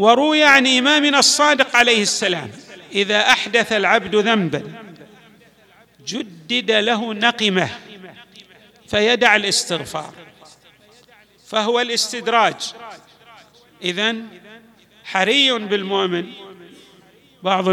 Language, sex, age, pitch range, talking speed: Arabic, male, 40-59, 180-230 Hz, 70 wpm